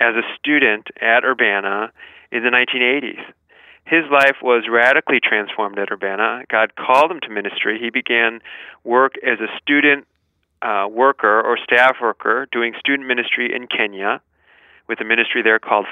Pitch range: 105-135 Hz